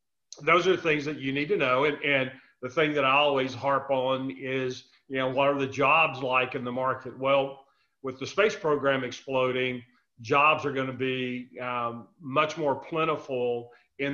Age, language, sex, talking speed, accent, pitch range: 40-59, English, male, 185 wpm, American, 125-145 Hz